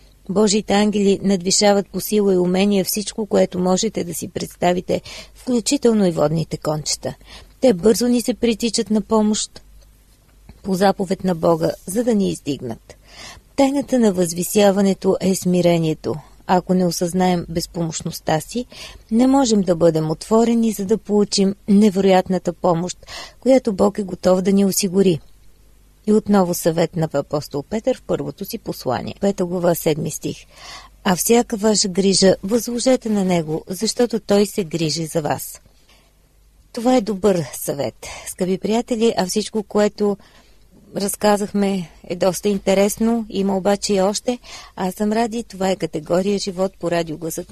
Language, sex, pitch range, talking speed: Bulgarian, female, 175-215 Hz, 145 wpm